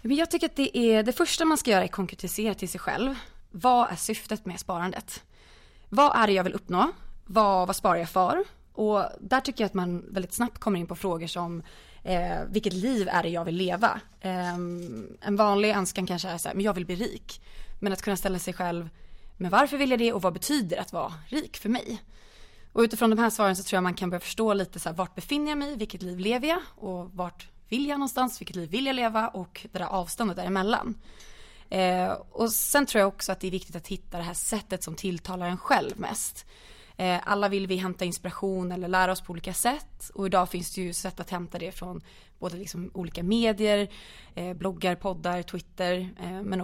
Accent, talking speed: native, 220 wpm